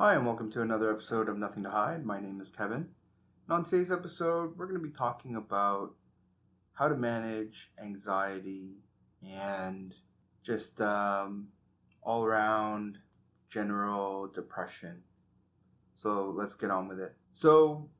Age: 30-49